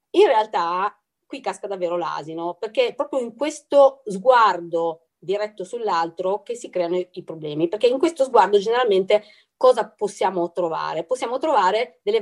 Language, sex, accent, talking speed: Italian, female, native, 145 wpm